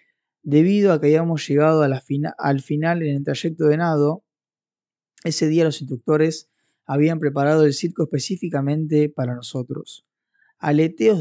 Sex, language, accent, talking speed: male, Spanish, Argentinian, 145 wpm